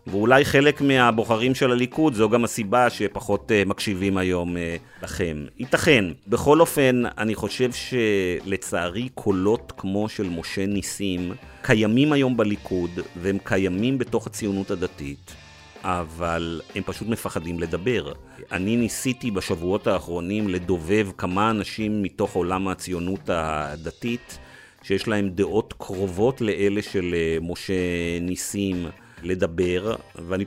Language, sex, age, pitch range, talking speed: Hebrew, male, 40-59, 90-110 Hz, 110 wpm